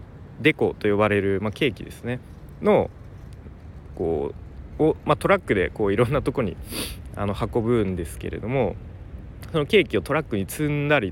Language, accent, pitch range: Japanese, native, 100-135 Hz